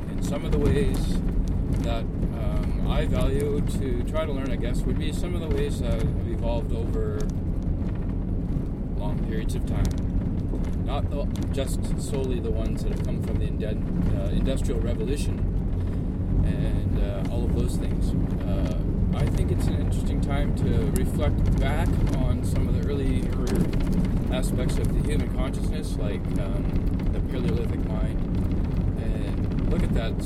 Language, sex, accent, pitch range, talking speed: English, male, American, 85-90 Hz, 145 wpm